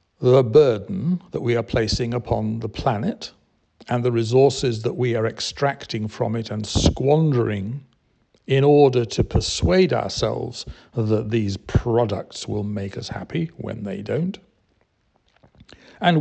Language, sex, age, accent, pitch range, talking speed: English, male, 60-79, British, 105-140 Hz, 135 wpm